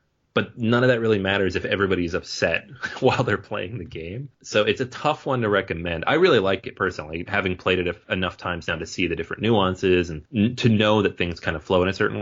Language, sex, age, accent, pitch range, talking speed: English, male, 30-49, American, 90-120 Hz, 235 wpm